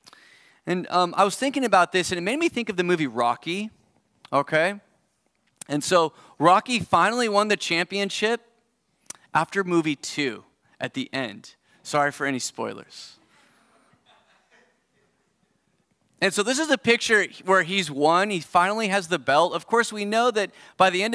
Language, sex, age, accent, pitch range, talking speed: English, male, 30-49, American, 160-215 Hz, 160 wpm